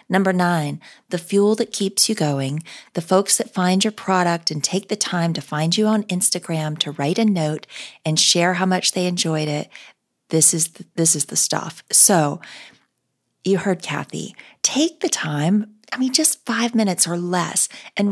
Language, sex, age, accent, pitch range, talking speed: English, female, 40-59, American, 165-210 Hz, 180 wpm